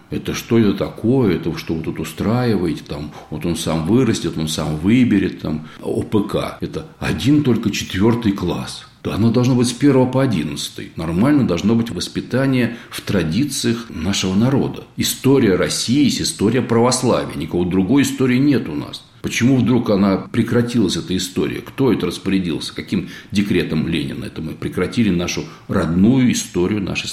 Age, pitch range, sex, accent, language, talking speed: 60-79, 85-120 Hz, male, native, Russian, 155 wpm